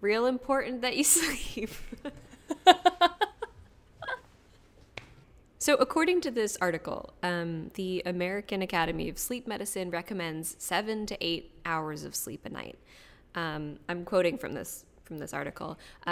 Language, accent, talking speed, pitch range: English, American, 130 wpm, 155-210 Hz